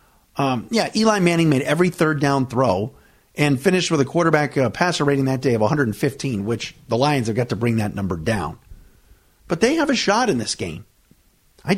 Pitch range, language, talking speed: 130-215 Hz, English, 205 wpm